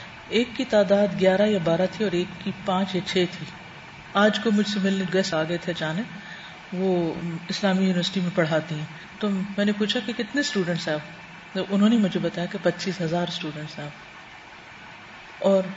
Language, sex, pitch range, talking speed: Urdu, female, 180-210 Hz, 180 wpm